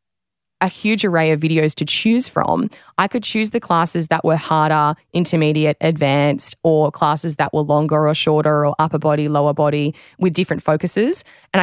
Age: 20-39